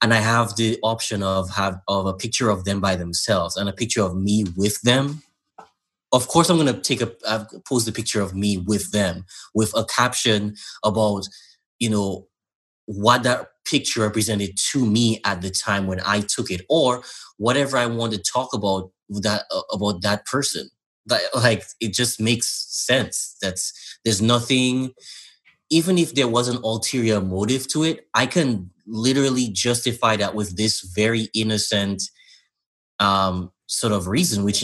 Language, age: English, 20-39